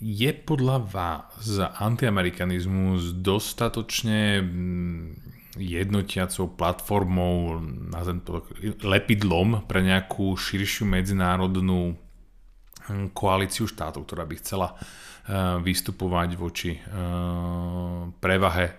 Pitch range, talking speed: 90-105 Hz, 70 wpm